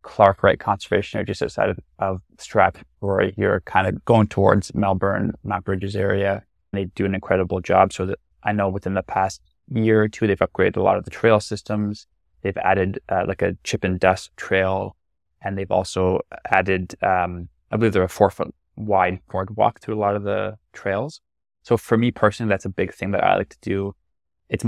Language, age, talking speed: English, 20-39, 200 wpm